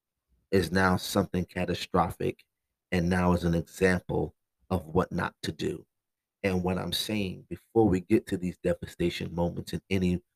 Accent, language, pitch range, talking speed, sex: American, English, 90-100 Hz, 155 wpm, male